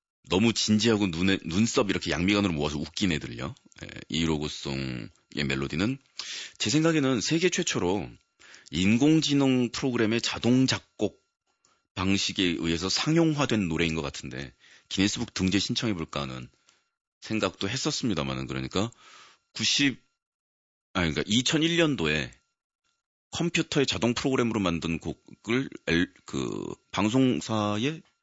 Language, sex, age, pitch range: Korean, male, 40-59, 85-130 Hz